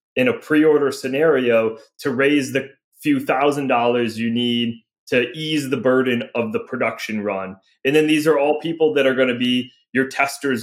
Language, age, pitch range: English, 20-39, 115-145 Hz